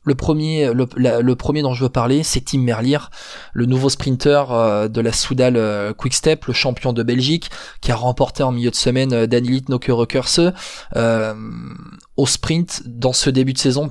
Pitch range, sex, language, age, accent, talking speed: 120-145 Hz, male, French, 20-39, French, 190 wpm